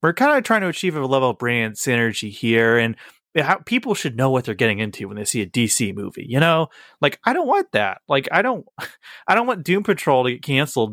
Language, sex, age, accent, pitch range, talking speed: English, male, 30-49, American, 110-140 Hz, 245 wpm